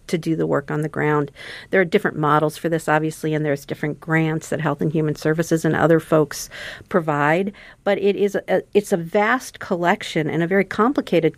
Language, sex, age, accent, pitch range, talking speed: English, female, 50-69, American, 160-190 Hz, 205 wpm